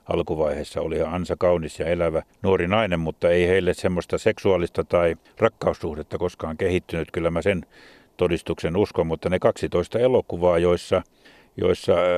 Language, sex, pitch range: Finnish, male, 90-100 Hz